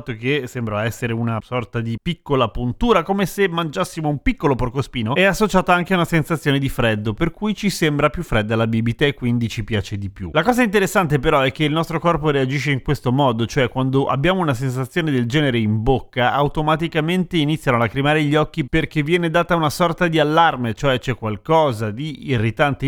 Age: 30-49